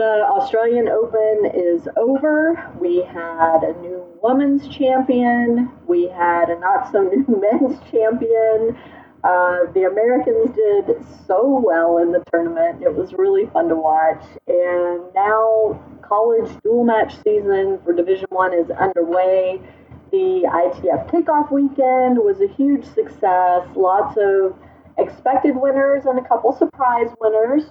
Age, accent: 30-49, American